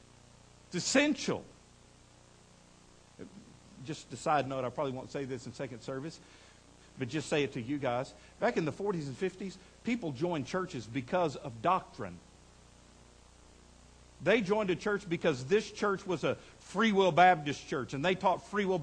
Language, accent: English, American